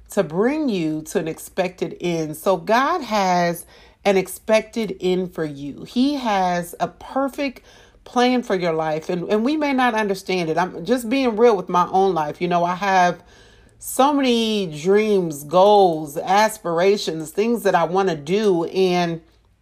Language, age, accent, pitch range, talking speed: English, 40-59, American, 185-260 Hz, 165 wpm